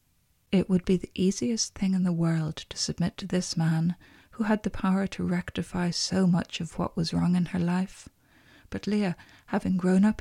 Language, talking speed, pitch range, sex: English, 200 wpm, 160-185 Hz, female